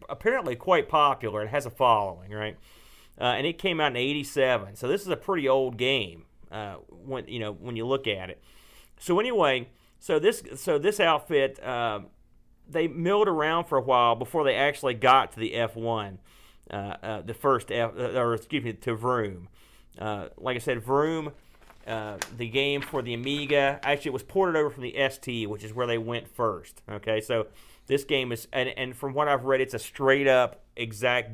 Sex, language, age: male, English, 40-59